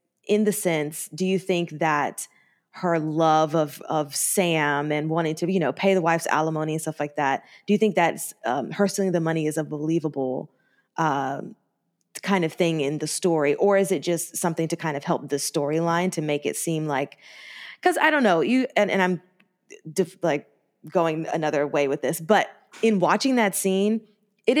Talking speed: 200 wpm